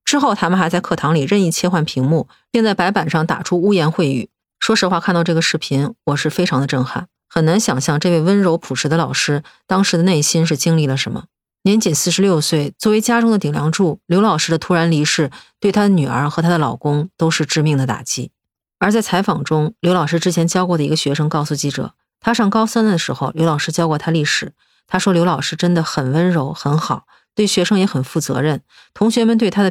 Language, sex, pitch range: Chinese, female, 150-195 Hz